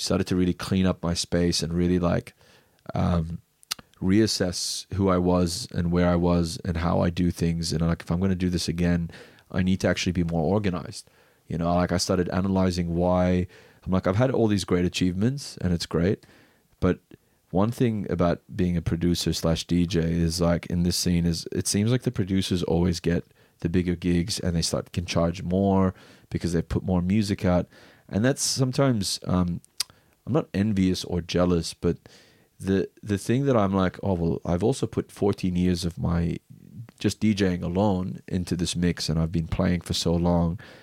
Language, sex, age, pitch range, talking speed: English, male, 30-49, 85-95 Hz, 195 wpm